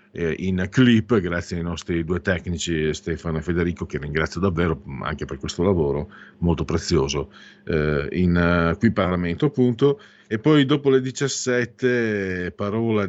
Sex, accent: male, native